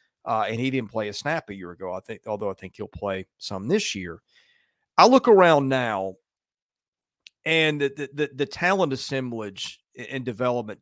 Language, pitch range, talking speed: English, 110-140 Hz, 175 wpm